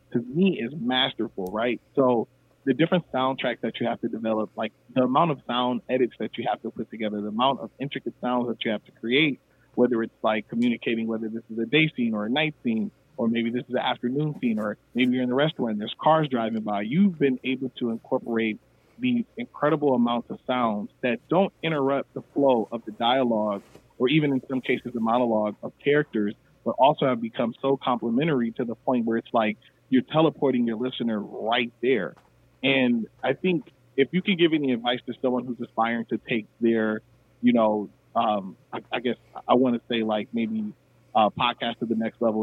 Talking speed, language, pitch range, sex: 210 wpm, English, 115-135 Hz, male